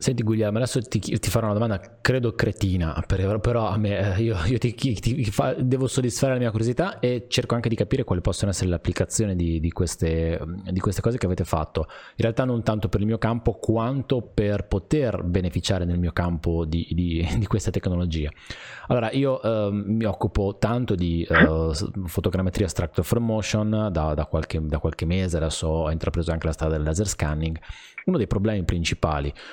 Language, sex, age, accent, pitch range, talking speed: Italian, male, 20-39, native, 85-110 Hz, 190 wpm